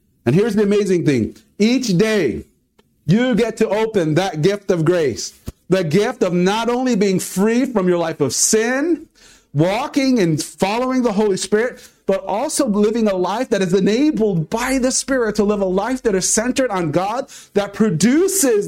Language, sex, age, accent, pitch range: Japanese, male, 40-59, American, 155-225 Hz